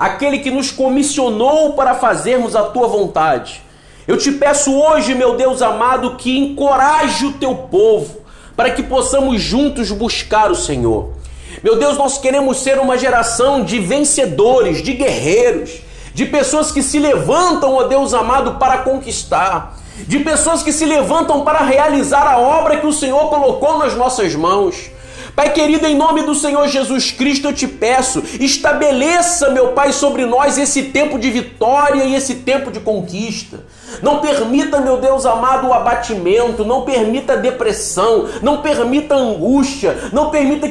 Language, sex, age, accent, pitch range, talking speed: Portuguese, male, 40-59, Brazilian, 250-290 Hz, 155 wpm